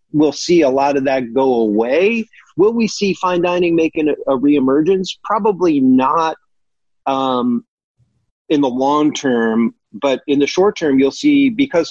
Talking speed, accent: 155 wpm, American